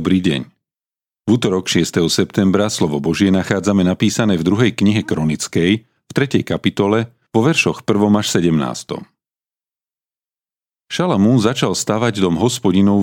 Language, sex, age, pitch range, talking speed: Slovak, male, 40-59, 90-115 Hz, 125 wpm